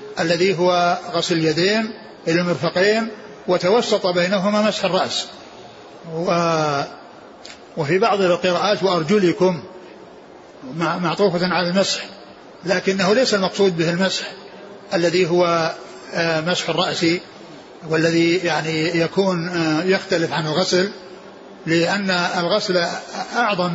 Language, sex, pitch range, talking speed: Arabic, male, 175-205 Hz, 90 wpm